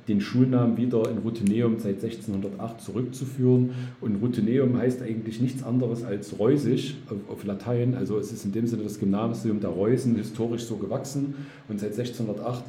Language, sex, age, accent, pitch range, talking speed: German, male, 40-59, German, 105-125 Hz, 160 wpm